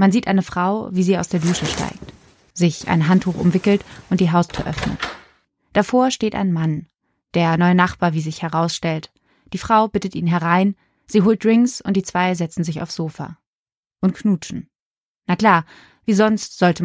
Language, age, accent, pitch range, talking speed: German, 20-39, German, 165-190 Hz, 180 wpm